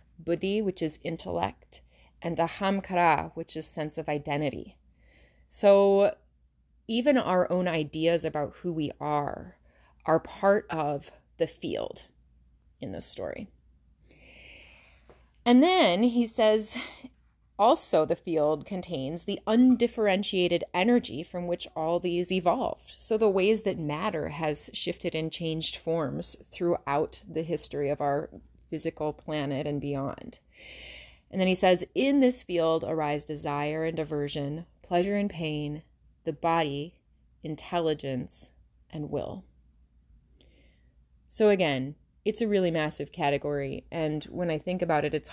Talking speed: 125 wpm